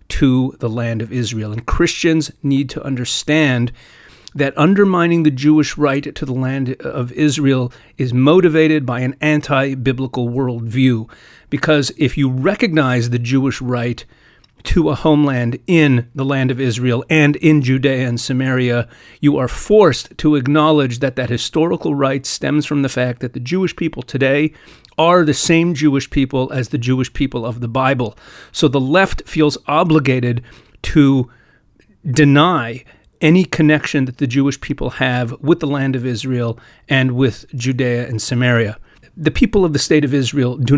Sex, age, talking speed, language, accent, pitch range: male, 40-59, 160 wpm, English, American, 125-150 Hz